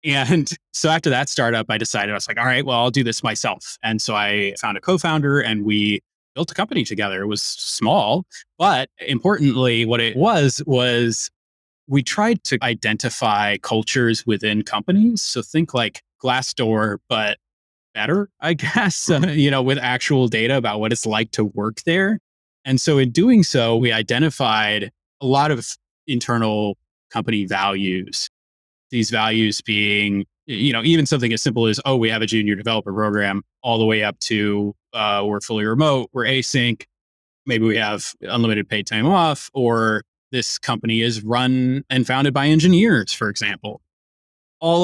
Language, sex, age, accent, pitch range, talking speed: English, male, 20-39, American, 105-135 Hz, 165 wpm